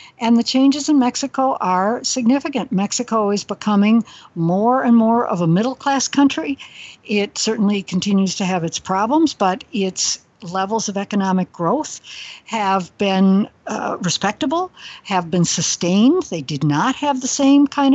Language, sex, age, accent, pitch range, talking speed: English, female, 60-79, American, 180-250 Hz, 150 wpm